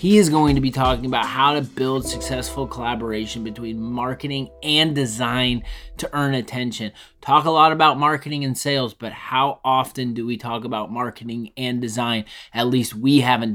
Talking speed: 175 wpm